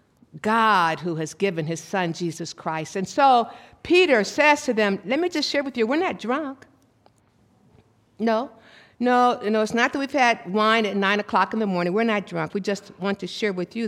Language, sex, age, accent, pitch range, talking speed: English, female, 60-79, American, 180-235 Hz, 210 wpm